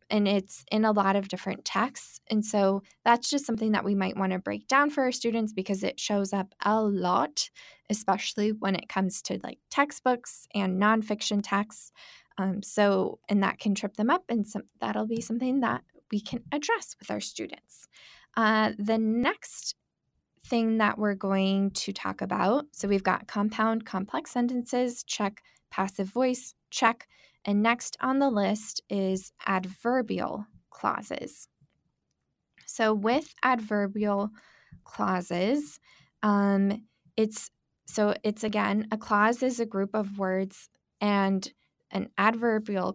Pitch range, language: 195-230 Hz, English